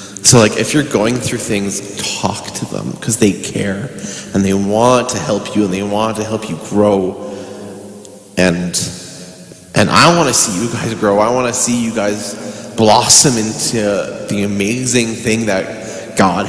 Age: 20-39